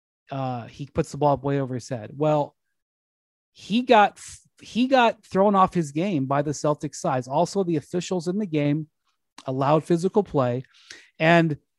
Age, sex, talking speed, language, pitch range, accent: 30-49, male, 165 wpm, English, 140-185 Hz, American